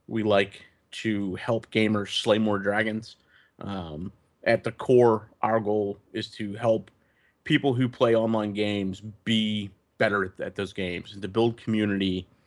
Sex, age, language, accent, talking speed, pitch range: male, 30-49, English, American, 150 wpm, 95-115 Hz